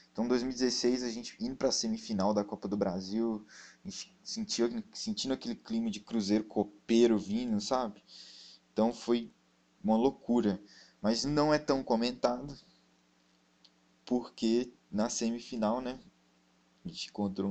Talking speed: 125 wpm